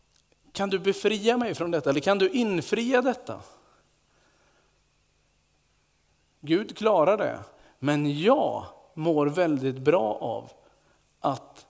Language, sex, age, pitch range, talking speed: Swedish, male, 50-69, 150-205 Hz, 110 wpm